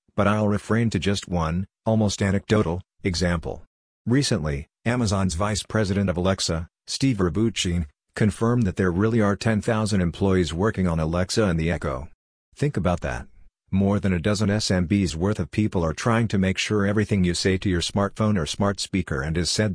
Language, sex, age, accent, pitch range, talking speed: English, male, 50-69, American, 90-105 Hz, 175 wpm